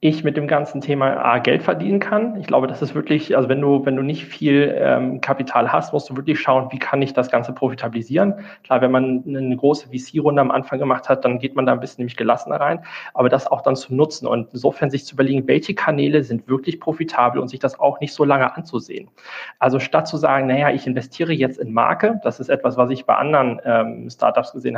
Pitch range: 125-145 Hz